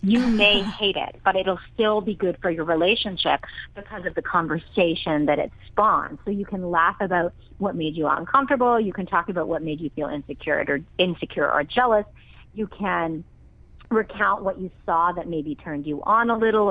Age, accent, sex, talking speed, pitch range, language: 40-59, American, female, 195 wpm, 155-205 Hz, English